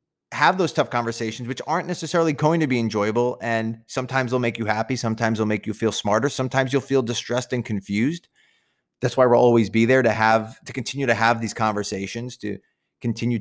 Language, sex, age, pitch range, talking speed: English, male, 30-49, 110-130 Hz, 200 wpm